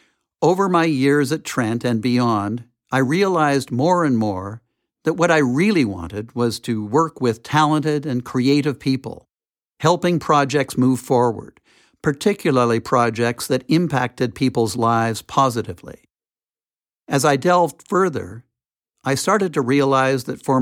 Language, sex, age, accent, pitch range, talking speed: English, male, 60-79, American, 115-150 Hz, 135 wpm